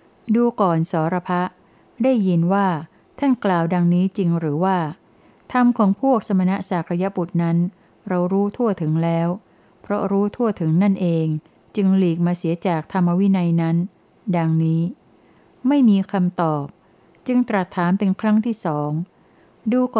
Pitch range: 170-210 Hz